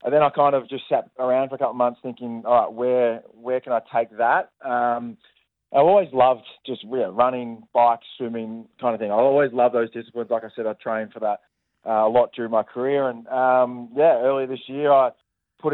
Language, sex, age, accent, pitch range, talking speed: English, male, 20-39, Australian, 115-125 Hz, 230 wpm